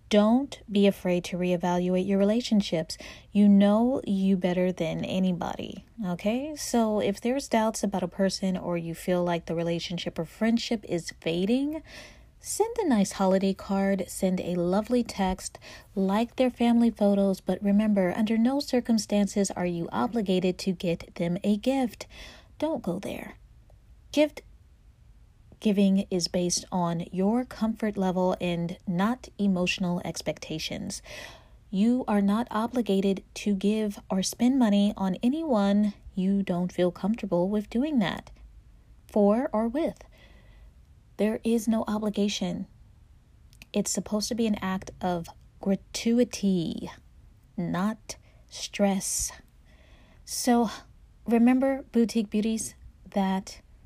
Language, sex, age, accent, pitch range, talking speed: English, female, 30-49, American, 185-225 Hz, 125 wpm